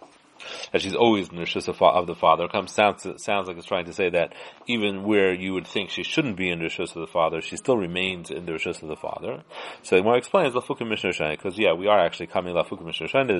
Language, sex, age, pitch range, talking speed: English, male, 30-49, 90-110 Hz, 260 wpm